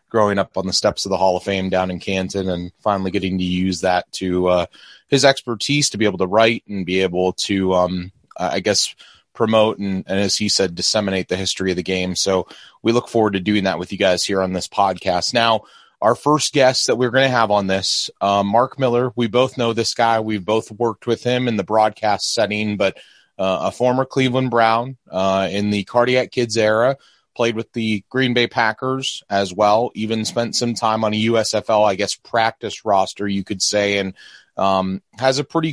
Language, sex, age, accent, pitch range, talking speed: English, male, 30-49, American, 100-125 Hz, 215 wpm